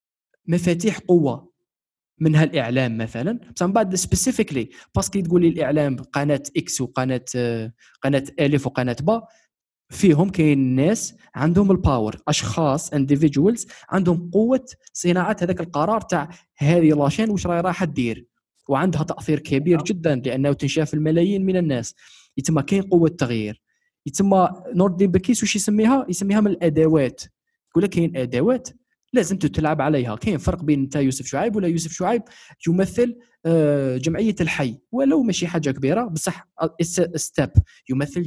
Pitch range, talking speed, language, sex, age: 140-190 Hz, 135 wpm, Arabic, male, 20-39